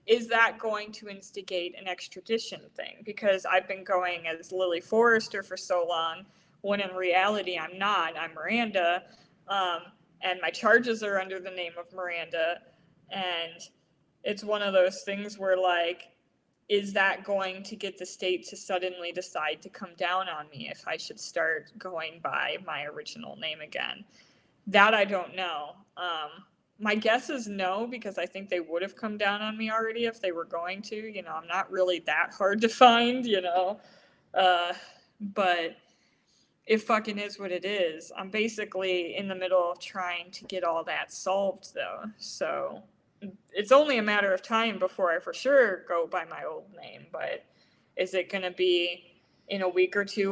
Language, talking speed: English, 180 wpm